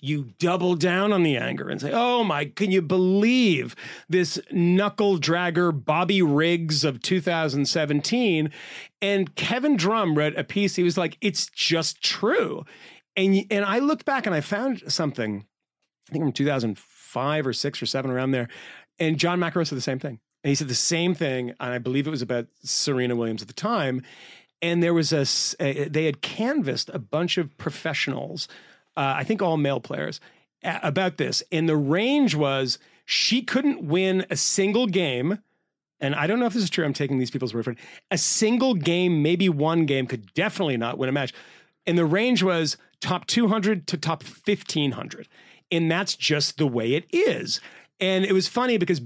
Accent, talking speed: American, 185 wpm